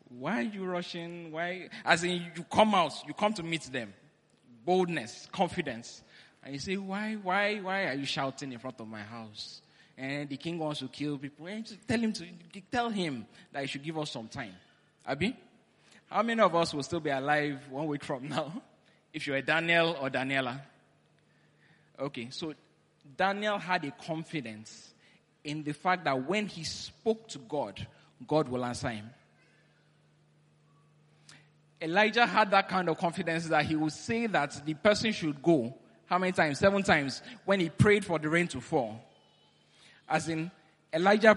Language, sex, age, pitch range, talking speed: English, male, 20-39, 140-185 Hz, 175 wpm